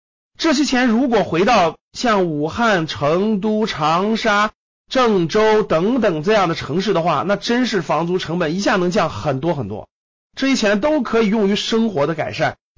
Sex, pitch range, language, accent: male, 140-215 Hz, Chinese, native